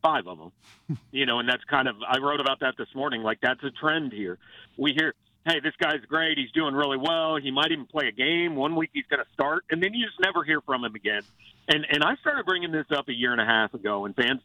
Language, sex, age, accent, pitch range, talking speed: English, male, 50-69, American, 125-185 Hz, 275 wpm